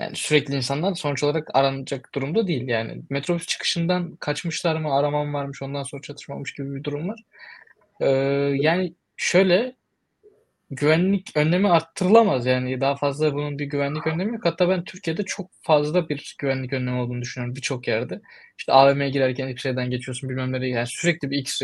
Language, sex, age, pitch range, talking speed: Turkish, male, 20-39, 130-180 Hz, 165 wpm